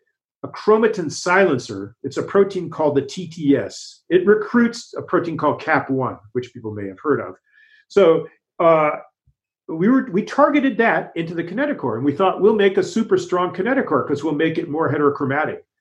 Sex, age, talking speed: male, 50-69, 175 wpm